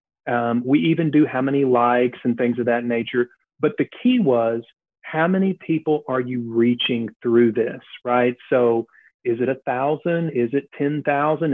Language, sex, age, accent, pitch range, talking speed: English, male, 40-59, American, 120-145 Hz, 170 wpm